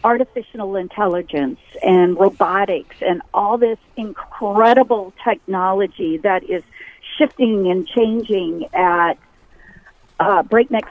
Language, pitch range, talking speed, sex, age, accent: English, 200-255 Hz, 95 wpm, female, 50-69, American